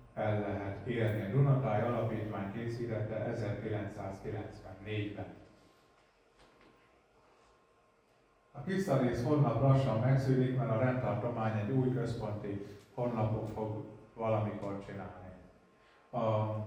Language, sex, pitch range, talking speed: Hungarian, male, 110-135 Hz, 85 wpm